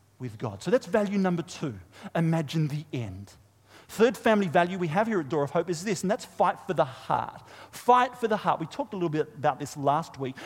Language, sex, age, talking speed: English, male, 40-59, 225 wpm